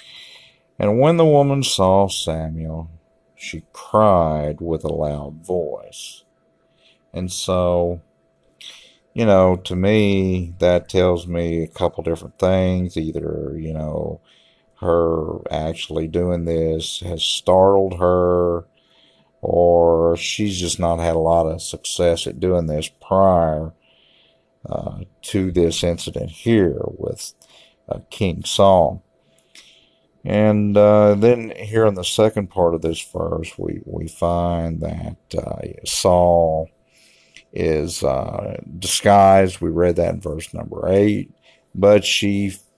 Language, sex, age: English, male, 50-69